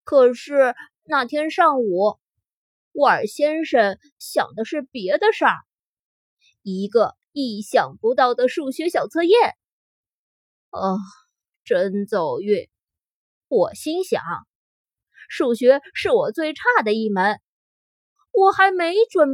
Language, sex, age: Chinese, female, 20-39